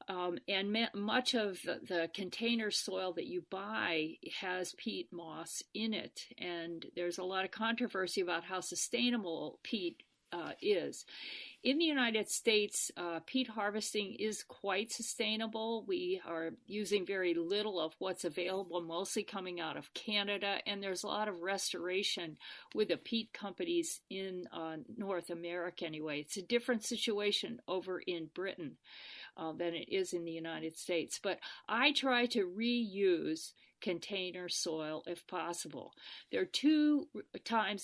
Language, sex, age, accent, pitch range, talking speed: English, female, 50-69, American, 175-220 Hz, 145 wpm